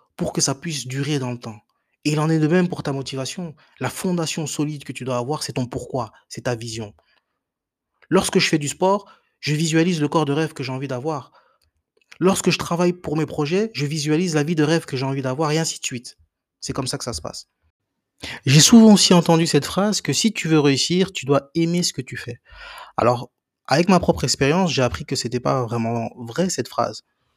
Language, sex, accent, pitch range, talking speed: French, male, French, 125-165 Hz, 230 wpm